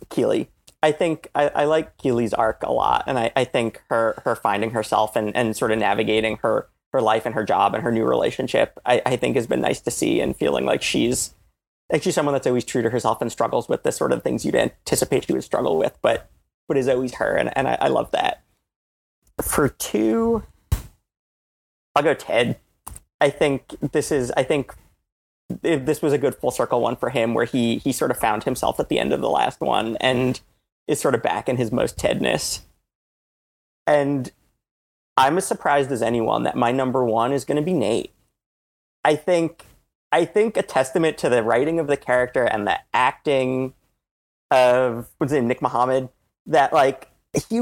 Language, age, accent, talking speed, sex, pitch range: English, 30-49, American, 200 wpm, male, 115-145 Hz